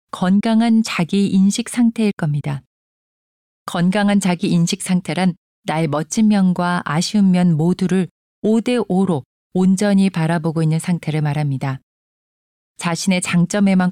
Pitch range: 165-205 Hz